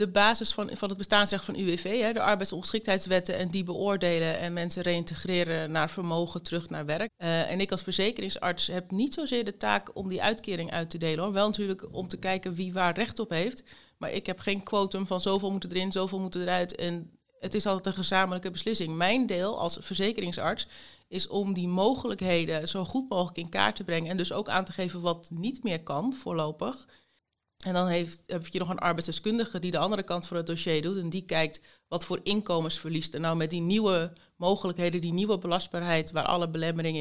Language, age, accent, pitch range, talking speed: Dutch, 30-49, Dutch, 165-195 Hz, 210 wpm